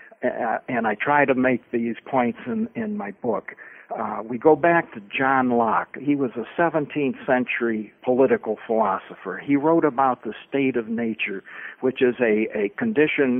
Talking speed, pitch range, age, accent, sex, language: 170 wpm, 125-165 Hz, 60-79, American, male, English